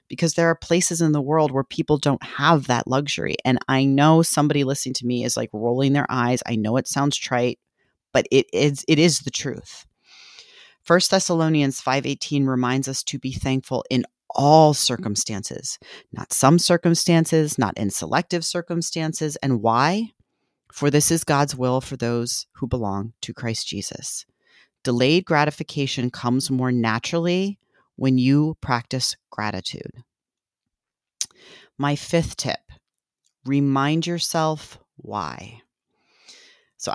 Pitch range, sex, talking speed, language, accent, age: 120-155 Hz, female, 140 wpm, English, American, 30-49